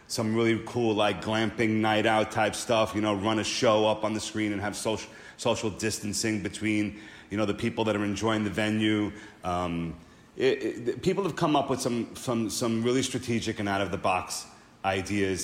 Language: English